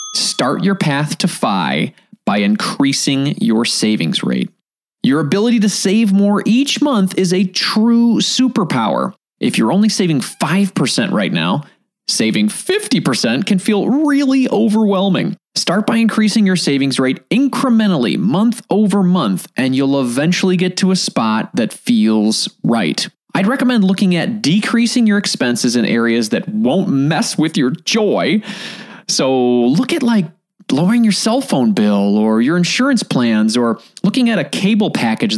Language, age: English, 20-39